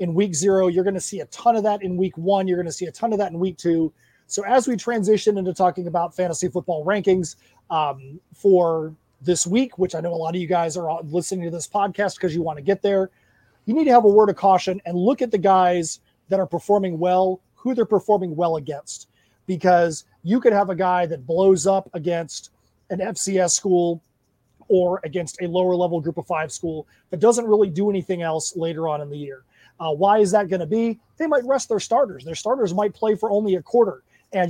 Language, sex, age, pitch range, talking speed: English, male, 30-49, 165-200 Hz, 235 wpm